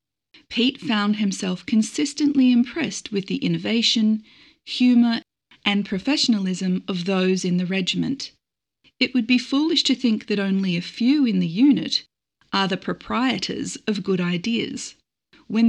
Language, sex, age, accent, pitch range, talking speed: English, female, 40-59, Australian, 190-255 Hz, 140 wpm